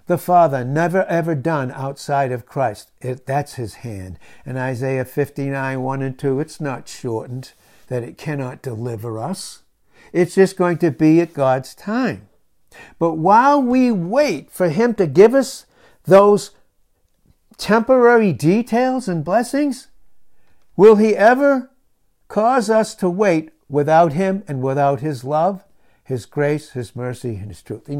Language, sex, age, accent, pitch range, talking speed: English, male, 60-79, American, 130-195 Hz, 150 wpm